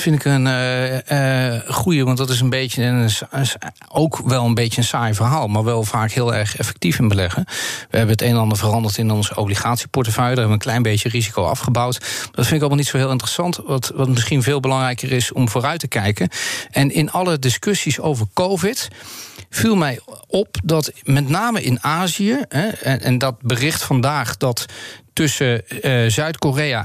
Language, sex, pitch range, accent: Dutch, male, 120-155 Hz, Dutch